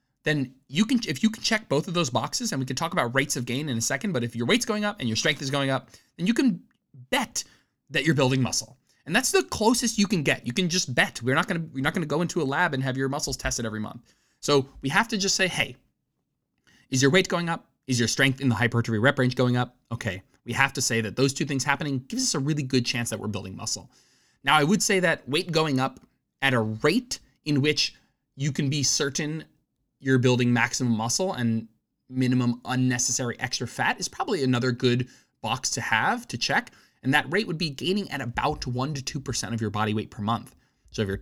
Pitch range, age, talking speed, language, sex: 120-165 Hz, 20-39, 245 wpm, English, male